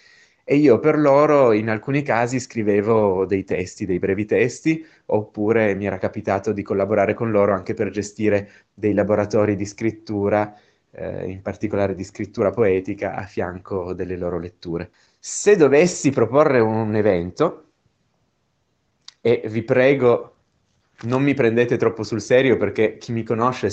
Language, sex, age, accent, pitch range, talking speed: Italian, male, 20-39, native, 100-135 Hz, 145 wpm